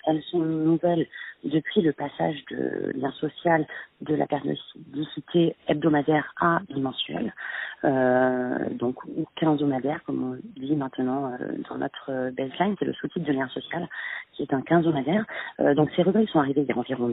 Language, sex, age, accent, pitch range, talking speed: French, female, 40-59, French, 145-185 Hz, 165 wpm